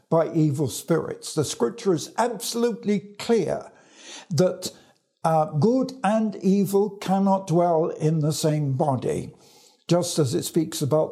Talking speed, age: 130 wpm, 60-79